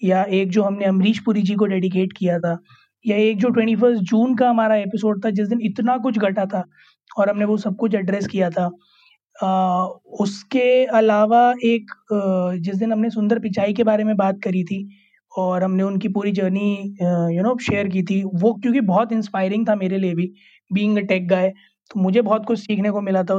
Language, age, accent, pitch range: Hindi, 20-39, native, 195-235 Hz